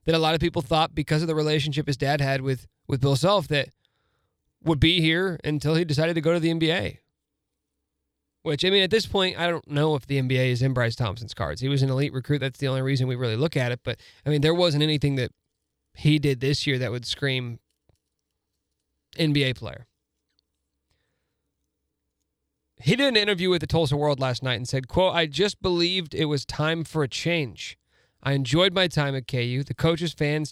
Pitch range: 115-160 Hz